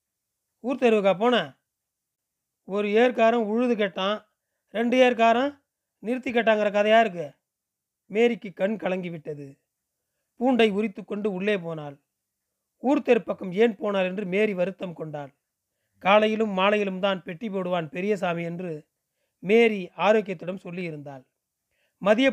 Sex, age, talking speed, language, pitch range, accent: male, 30-49, 105 wpm, Tamil, 175-225 Hz, native